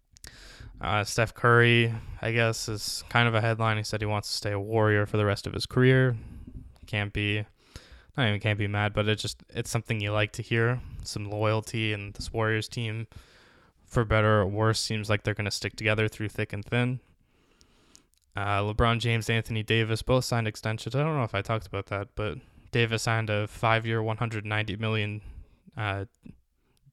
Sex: male